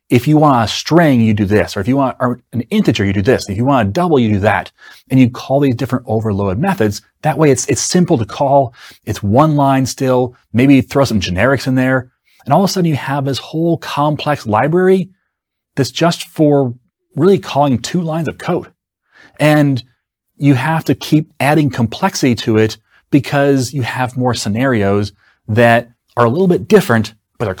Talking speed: 200 wpm